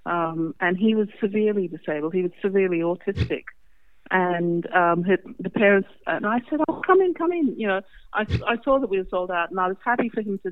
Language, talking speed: English, 230 wpm